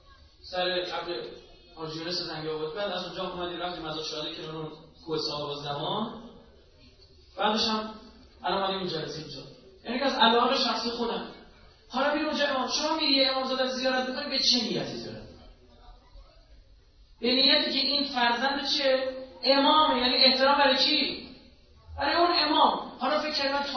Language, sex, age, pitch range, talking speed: Persian, male, 30-49, 195-300 Hz, 160 wpm